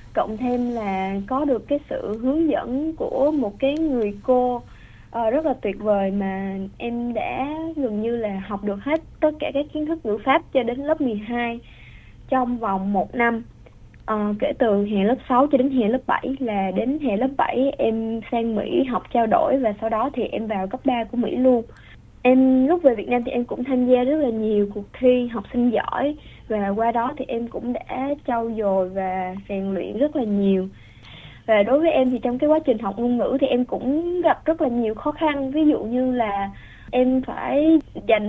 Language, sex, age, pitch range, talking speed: Vietnamese, female, 20-39, 215-270 Hz, 215 wpm